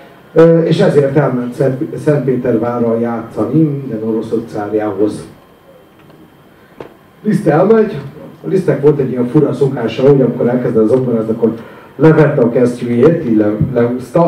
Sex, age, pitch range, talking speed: male, 50-69, 110-140 Hz, 120 wpm